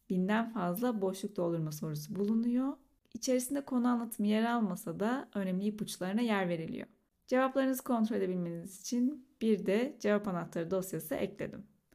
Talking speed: 130 wpm